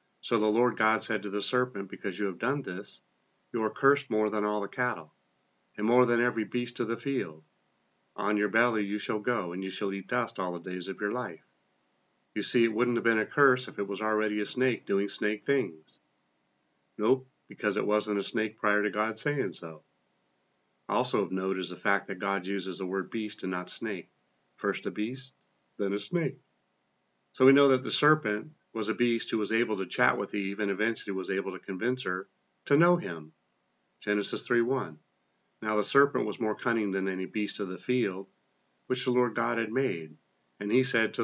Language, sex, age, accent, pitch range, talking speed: English, male, 40-59, American, 100-120 Hz, 210 wpm